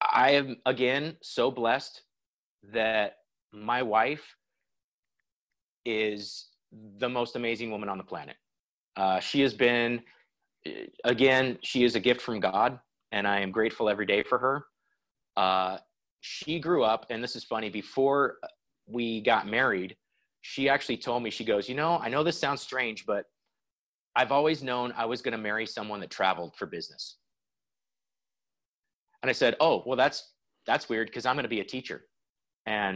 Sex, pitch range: male, 105-135 Hz